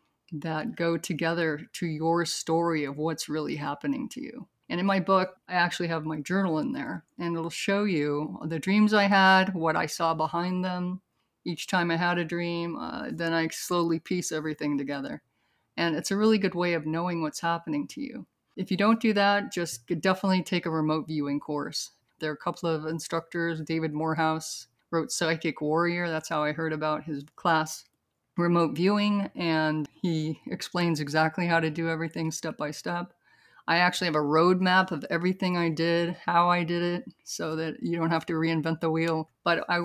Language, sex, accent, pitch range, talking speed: English, female, American, 160-185 Hz, 195 wpm